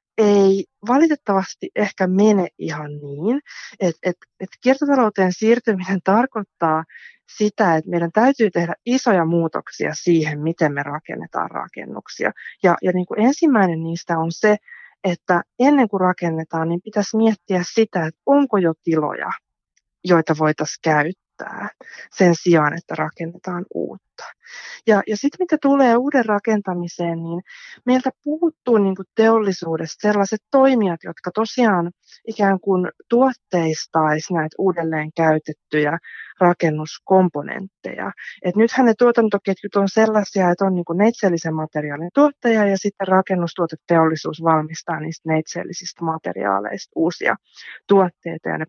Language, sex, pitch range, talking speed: Finnish, female, 165-220 Hz, 115 wpm